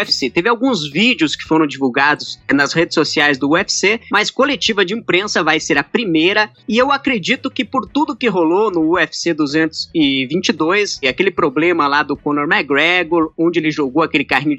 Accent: Brazilian